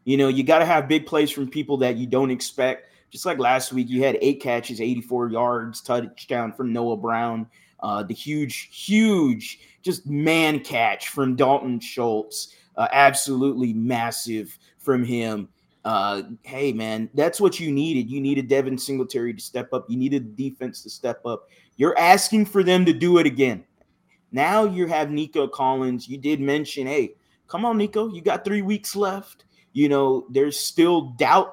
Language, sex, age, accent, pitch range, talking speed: English, male, 20-39, American, 125-165 Hz, 180 wpm